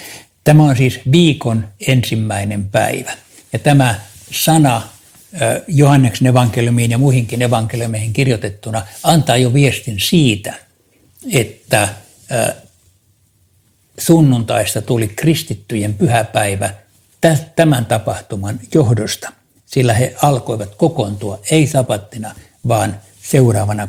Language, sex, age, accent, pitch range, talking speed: Finnish, male, 60-79, native, 105-135 Hz, 90 wpm